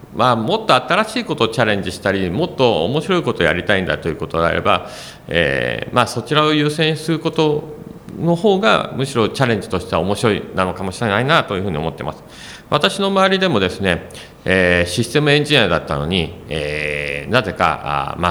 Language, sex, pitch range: Japanese, male, 85-135 Hz